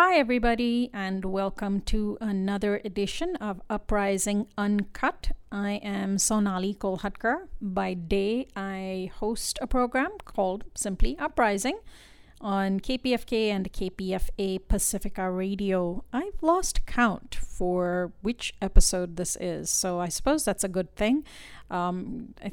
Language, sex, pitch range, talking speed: English, female, 185-215 Hz, 125 wpm